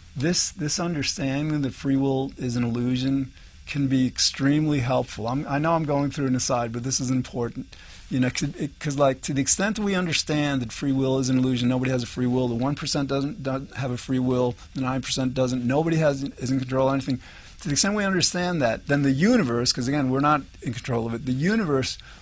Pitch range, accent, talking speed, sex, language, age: 125-145 Hz, American, 220 wpm, male, English, 50-69